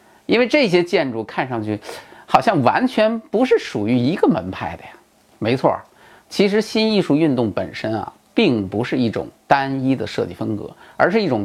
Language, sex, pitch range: Chinese, male, 120-190 Hz